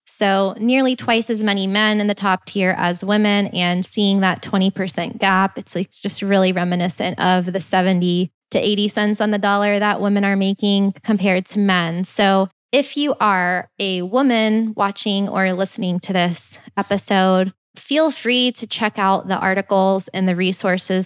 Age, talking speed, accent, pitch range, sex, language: 20-39, 170 wpm, American, 185-220 Hz, female, English